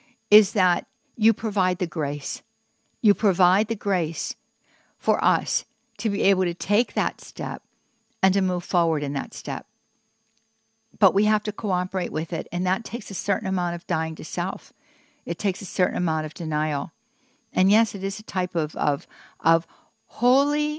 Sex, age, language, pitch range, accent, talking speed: female, 60-79, English, 170-220 Hz, American, 175 wpm